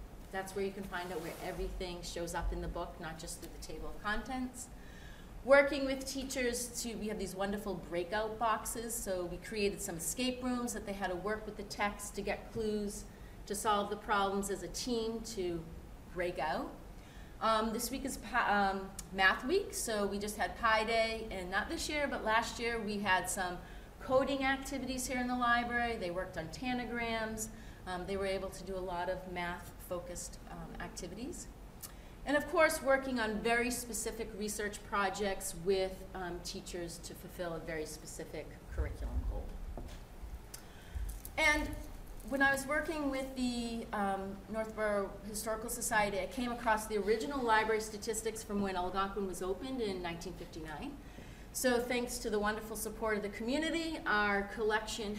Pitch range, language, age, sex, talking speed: 185-235 Hz, English, 30-49, female, 170 wpm